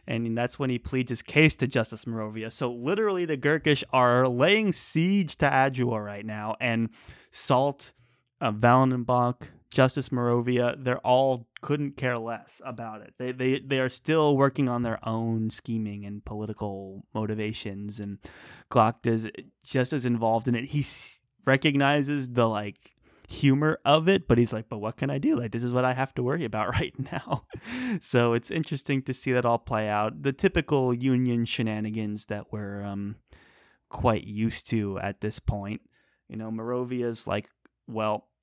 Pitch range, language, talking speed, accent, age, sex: 110-135 Hz, English, 170 wpm, American, 30-49, male